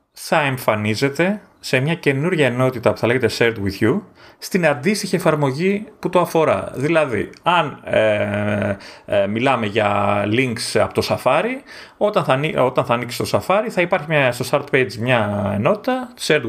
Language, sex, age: Greek, male, 30-49